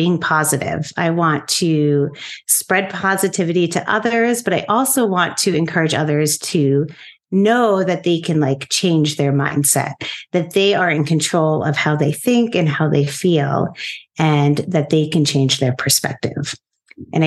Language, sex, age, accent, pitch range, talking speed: English, female, 40-59, American, 150-200 Hz, 160 wpm